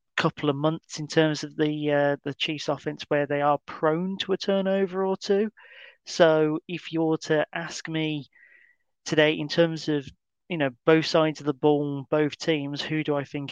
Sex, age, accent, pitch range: male, 30-49, British, 145-170 Hz